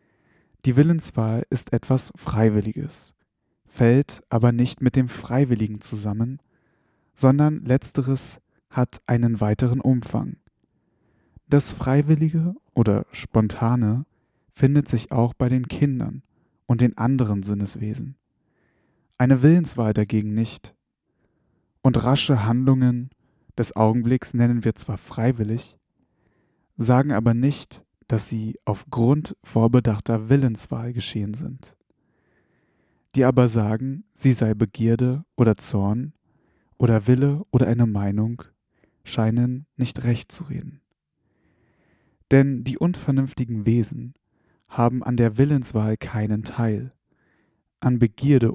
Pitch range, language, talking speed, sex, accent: 110-135 Hz, German, 105 wpm, male, German